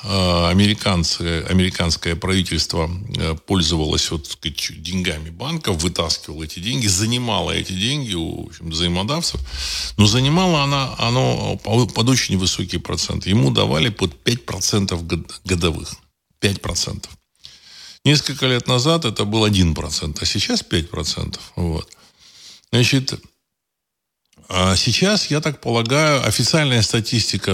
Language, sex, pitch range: Russian, male, 85-115 Hz